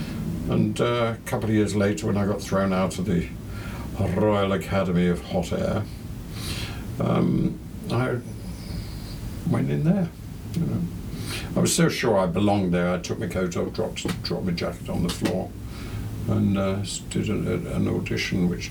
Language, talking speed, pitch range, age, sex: English, 155 wpm, 90-120 Hz, 60-79, male